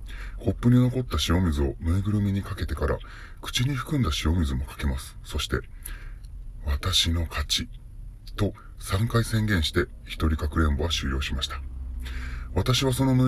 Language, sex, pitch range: Japanese, female, 75-105 Hz